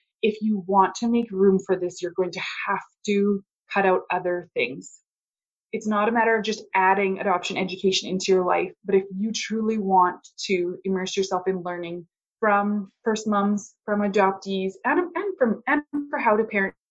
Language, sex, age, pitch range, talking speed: English, female, 20-39, 190-230 Hz, 180 wpm